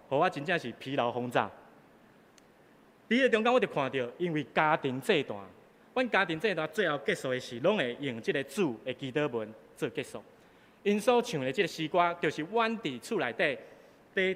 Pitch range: 145-220 Hz